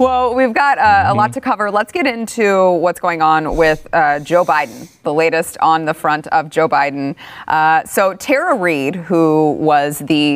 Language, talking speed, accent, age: English, 190 wpm, American, 30-49